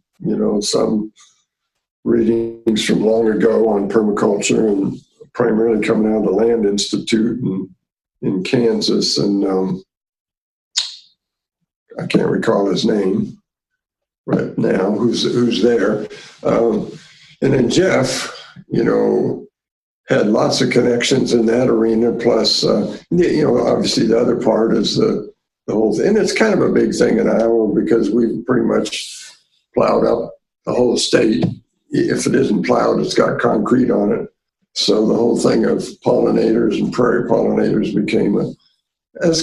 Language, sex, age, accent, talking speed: English, male, 60-79, American, 150 wpm